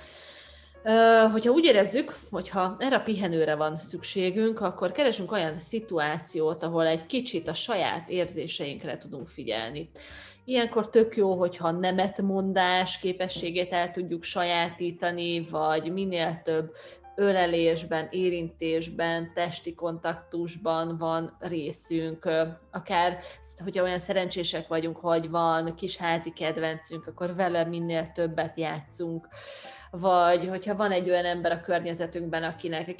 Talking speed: 115 wpm